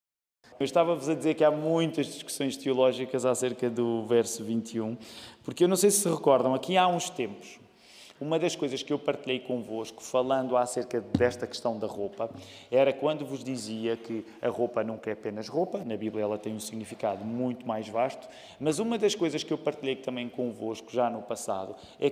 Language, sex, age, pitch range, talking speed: Portuguese, male, 20-39, 120-155 Hz, 190 wpm